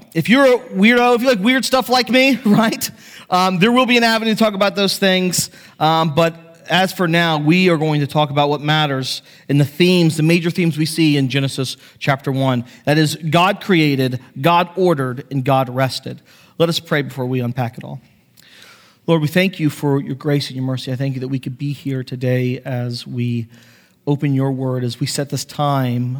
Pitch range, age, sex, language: 130-165 Hz, 40-59, male, English